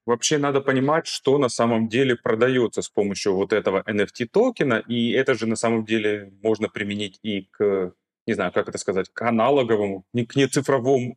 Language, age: Ukrainian, 30-49